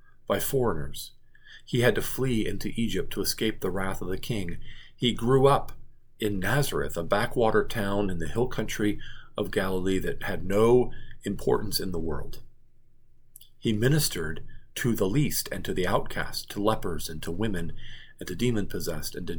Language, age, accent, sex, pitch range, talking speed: English, 40-59, American, male, 100-120 Hz, 170 wpm